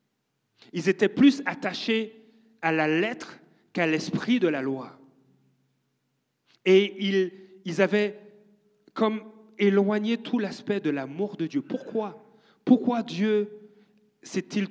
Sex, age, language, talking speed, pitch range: male, 40-59, French, 115 wpm, 150-210 Hz